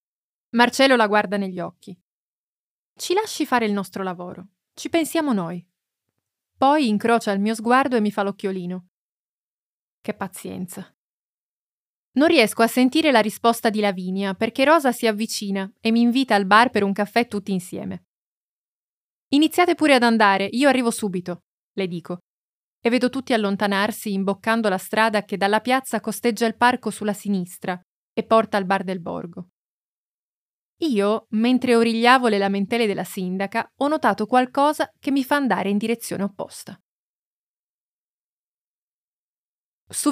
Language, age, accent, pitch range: Italian, 20-39, native, 195-245 Hz